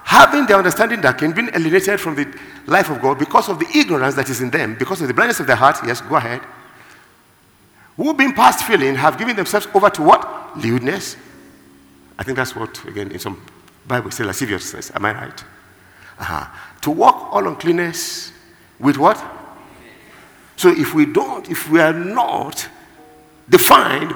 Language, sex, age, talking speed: English, male, 50-69, 175 wpm